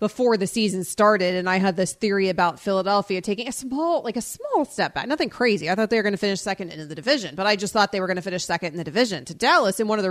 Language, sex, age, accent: English, female, 30-49, American